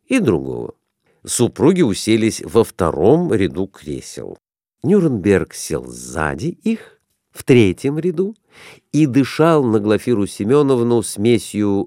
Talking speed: 105 wpm